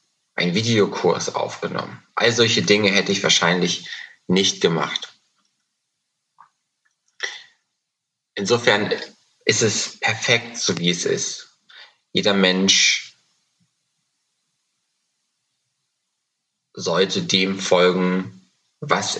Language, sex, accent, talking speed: German, male, German, 80 wpm